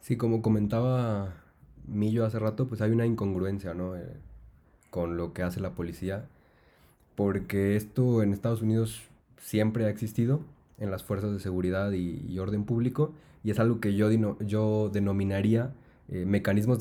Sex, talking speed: male, 155 wpm